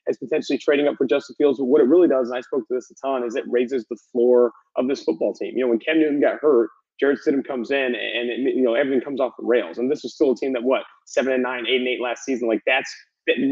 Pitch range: 120-155 Hz